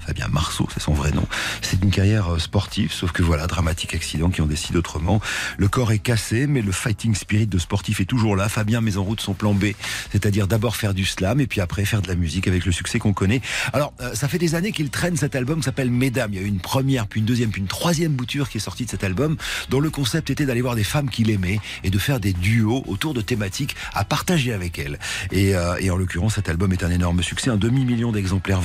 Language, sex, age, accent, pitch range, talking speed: French, male, 40-59, French, 90-125 Hz, 260 wpm